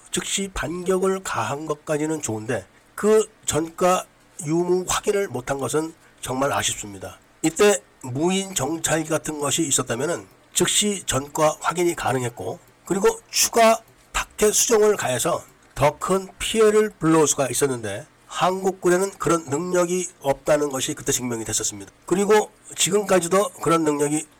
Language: Korean